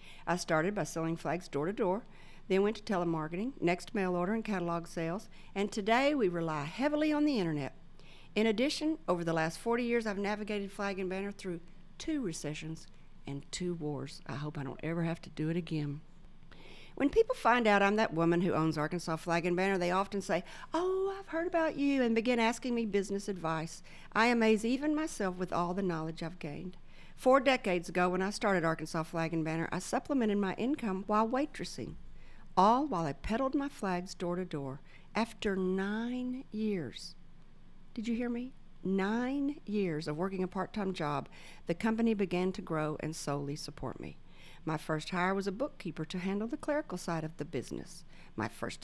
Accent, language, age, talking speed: American, English, 50-69, 190 wpm